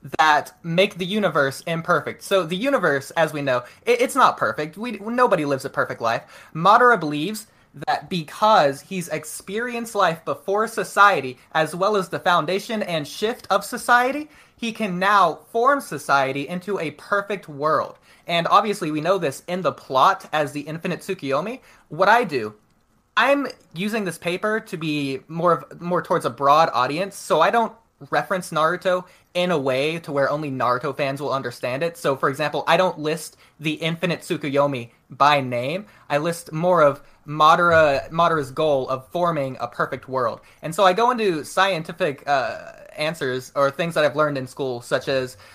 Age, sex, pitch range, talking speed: 20-39, male, 140-190 Hz, 170 wpm